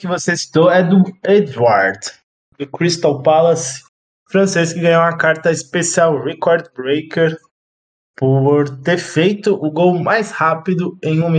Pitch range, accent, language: 135-170 Hz, Brazilian, Portuguese